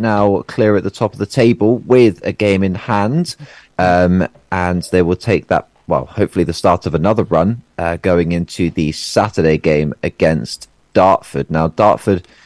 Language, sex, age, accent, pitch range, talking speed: English, male, 30-49, British, 80-105 Hz, 175 wpm